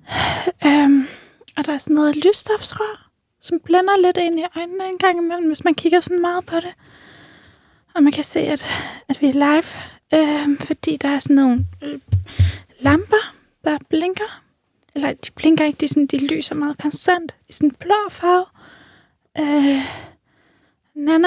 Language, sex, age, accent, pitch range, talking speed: Danish, female, 10-29, native, 285-350 Hz, 165 wpm